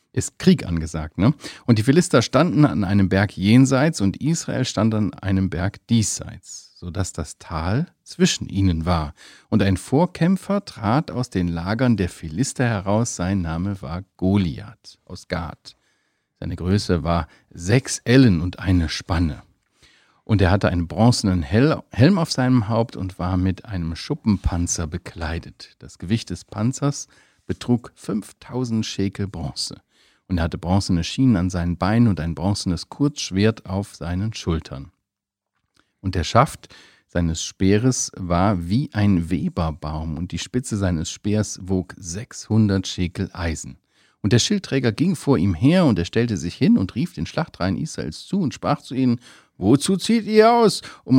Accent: German